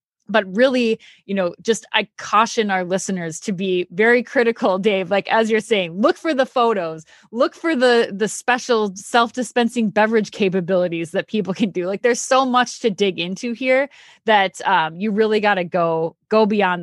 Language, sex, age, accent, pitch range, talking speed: English, female, 20-39, American, 185-235 Hz, 185 wpm